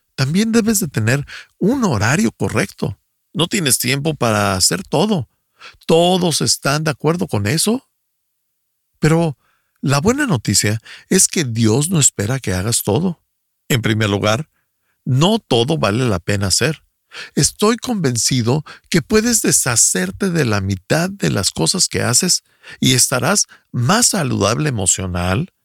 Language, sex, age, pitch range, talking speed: Spanish, male, 50-69, 105-165 Hz, 135 wpm